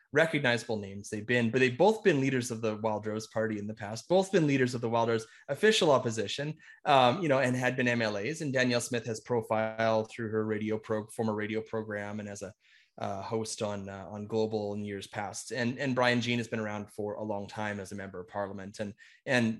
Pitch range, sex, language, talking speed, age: 110-130 Hz, male, English, 225 wpm, 20-39